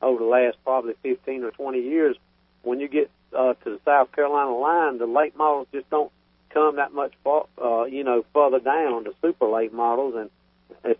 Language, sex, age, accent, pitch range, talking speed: English, male, 50-69, American, 115-140 Hz, 200 wpm